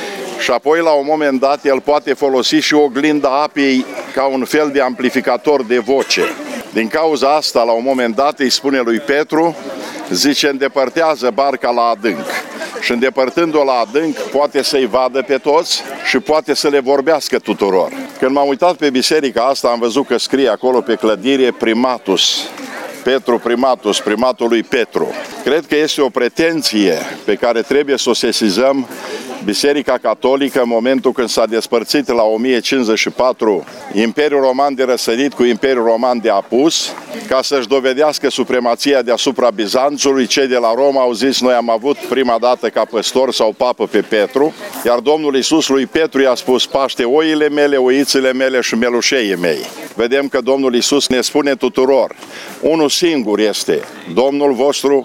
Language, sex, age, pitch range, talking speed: Romanian, male, 50-69, 125-145 Hz, 160 wpm